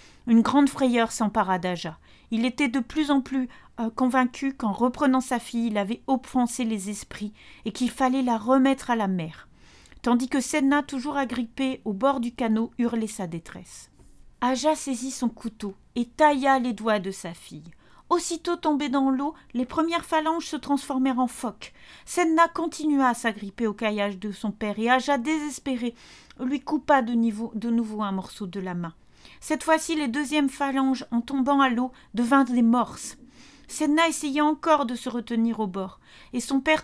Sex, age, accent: female, 40-59, French